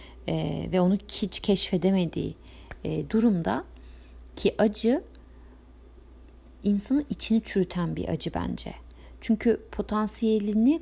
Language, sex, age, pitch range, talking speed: Turkish, female, 30-49, 160-220 Hz, 85 wpm